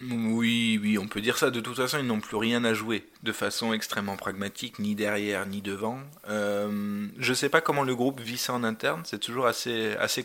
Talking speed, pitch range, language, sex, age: 230 wpm, 105-115 Hz, French, male, 20-39